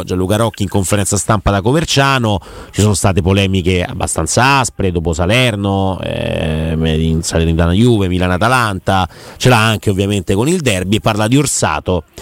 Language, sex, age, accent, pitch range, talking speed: Italian, male, 30-49, native, 100-125 Hz, 155 wpm